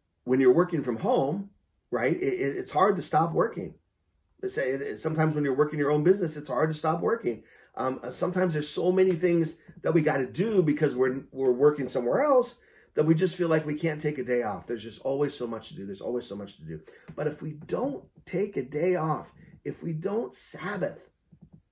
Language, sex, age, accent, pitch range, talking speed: English, male, 40-59, American, 125-165 Hz, 210 wpm